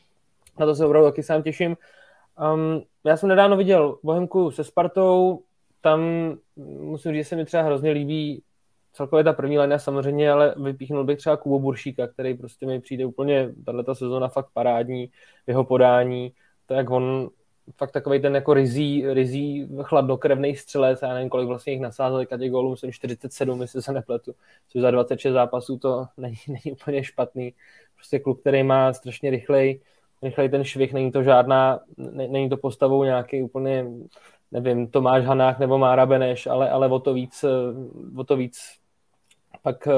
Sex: male